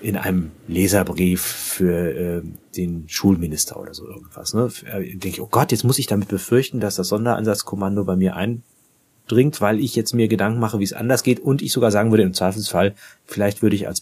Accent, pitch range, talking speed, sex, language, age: German, 95-120 Hz, 205 wpm, male, German, 30-49